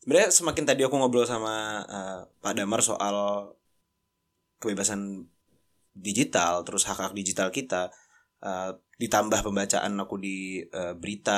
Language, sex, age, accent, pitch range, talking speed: Indonesian, male, 20-39, native, 100-140 Hz, 120 wpm